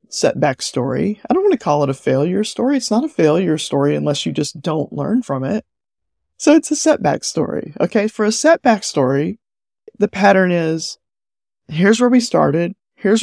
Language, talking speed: English, 185 wpm